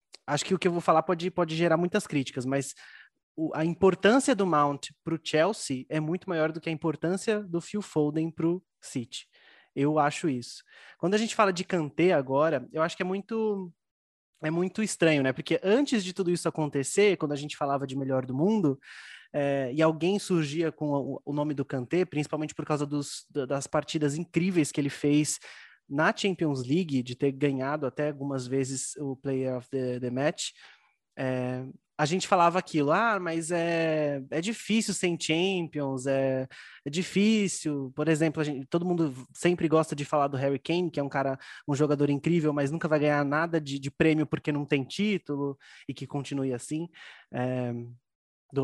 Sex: male